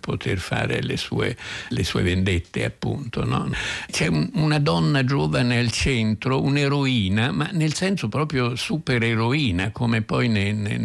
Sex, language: male, Italian